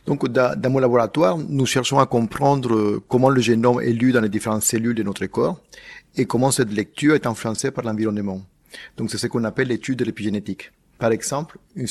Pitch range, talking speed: 110-130 Hz, 195 wpm